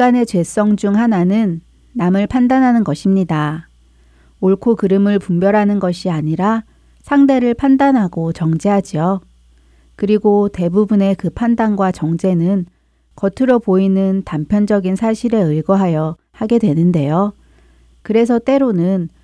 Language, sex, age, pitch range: Korean, female, 40-59, 165-215 Hz